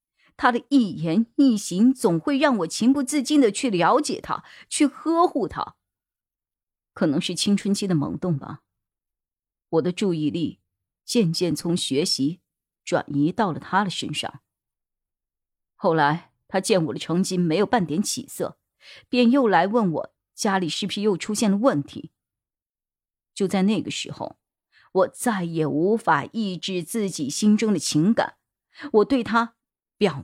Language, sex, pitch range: Chinese, female, 155-220 Hz